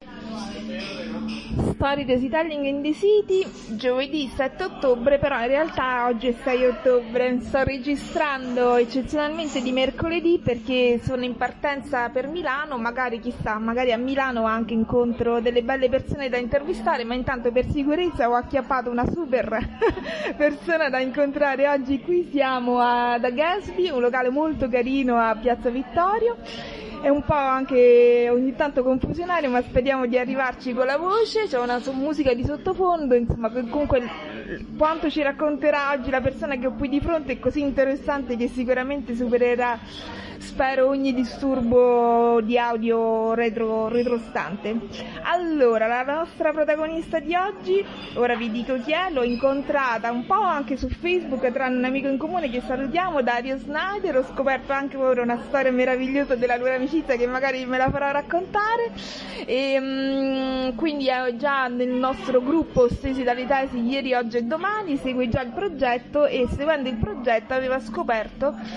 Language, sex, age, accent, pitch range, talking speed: Italian, female, 30-49, native, 245-290 Hz, 155 wpm